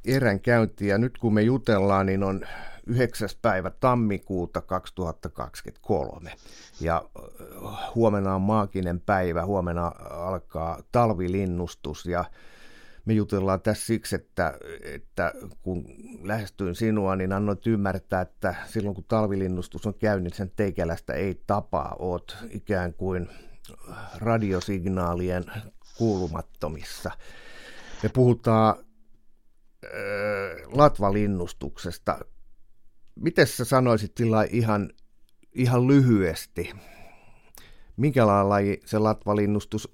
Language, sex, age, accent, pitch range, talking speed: Finnish, male, 50-69, native, 95-115 Hz, 100 wpm